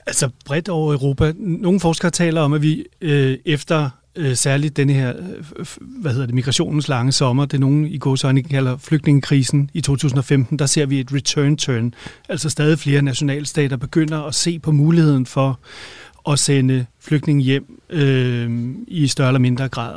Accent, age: native, 30-49